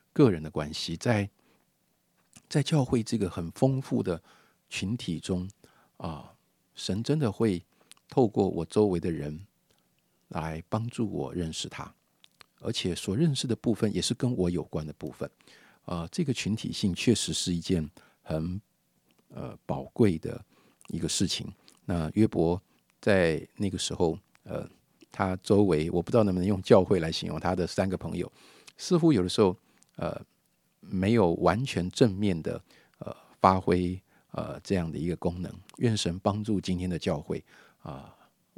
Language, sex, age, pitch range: Chinese, male, 50-69, 85-110 Hz